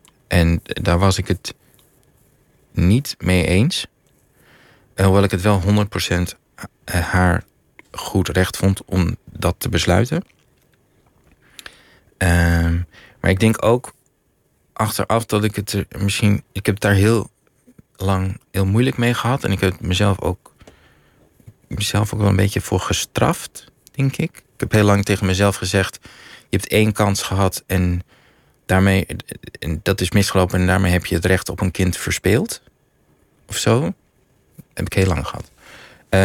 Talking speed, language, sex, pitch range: 150 wpm, Dutch, male, 90-105 Hz